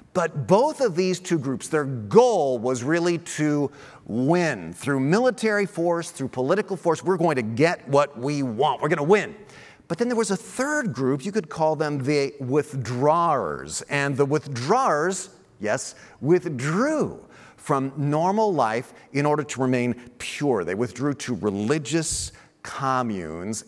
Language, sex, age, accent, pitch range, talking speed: English, male, 50-69, American, 130-190 Hz, 150 wpm